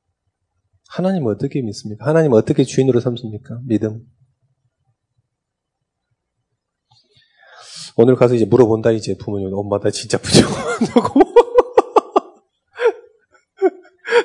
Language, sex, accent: Korean, male, native